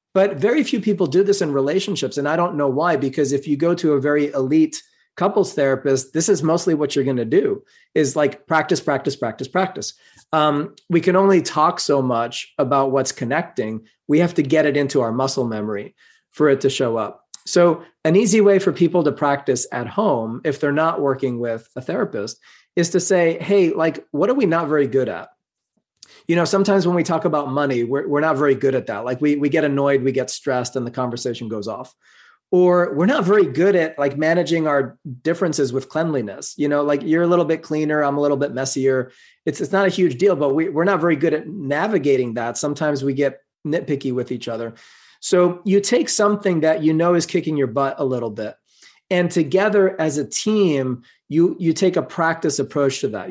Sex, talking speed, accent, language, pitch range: male, 215 wpm, American, English, 135-175 Hz